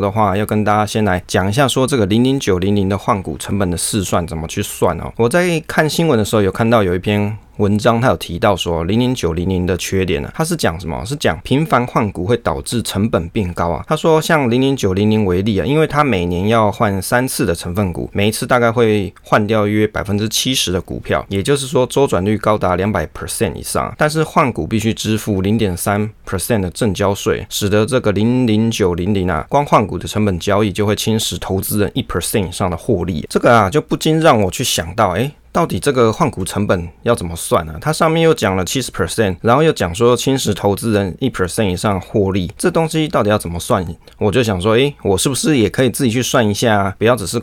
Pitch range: 95-120 Hz